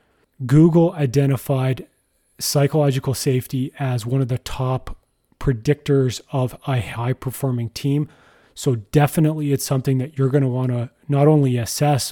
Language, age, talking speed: English, 30-49, 140 wpm